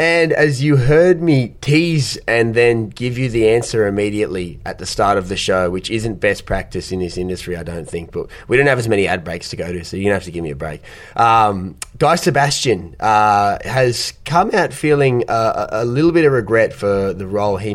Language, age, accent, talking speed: English, 20-39, Australian, 225 wpm